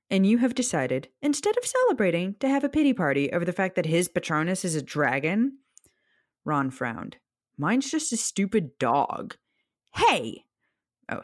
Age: 20-39